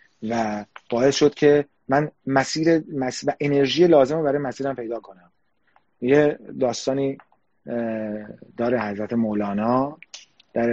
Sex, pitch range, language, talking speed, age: male, 115-140 Hz, Persian, 115 wpm, 30-49